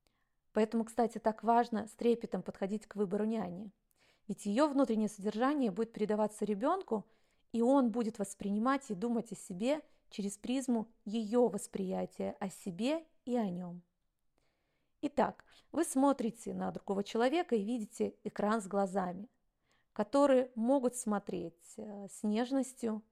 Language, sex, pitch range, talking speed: Russian, female, 200-245 Hz, 130 wpm